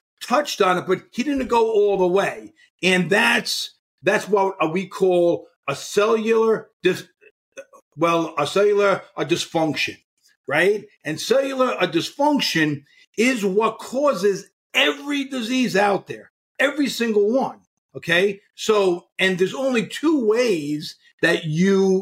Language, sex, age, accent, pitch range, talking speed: English, male, 50-69, American, 180-285 Hz, 125 wpm